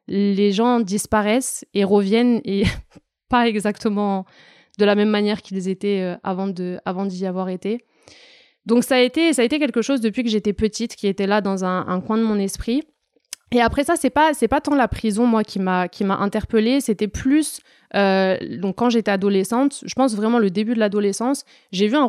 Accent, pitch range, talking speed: French, 195-230 Hz, 205 wpm